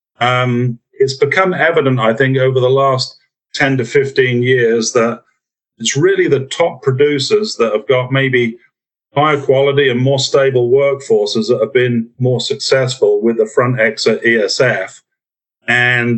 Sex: male